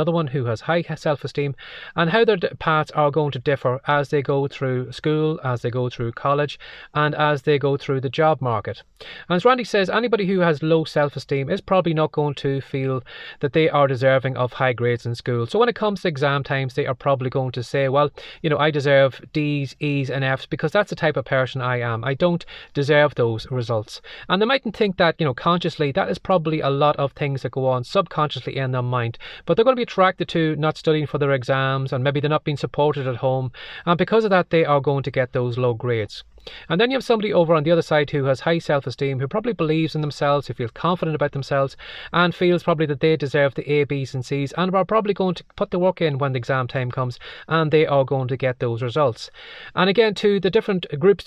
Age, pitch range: 30-49, 130-165 Hz